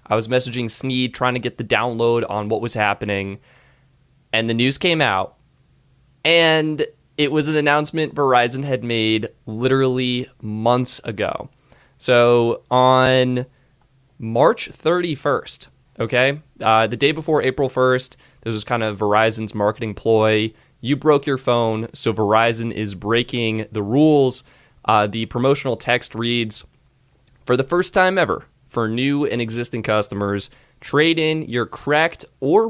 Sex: male